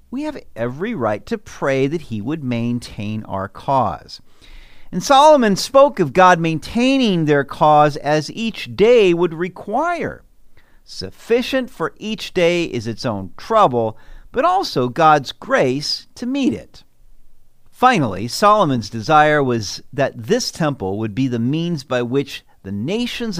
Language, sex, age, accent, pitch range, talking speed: English, male, 50-69, American, 115-180 Hz, 140 wpm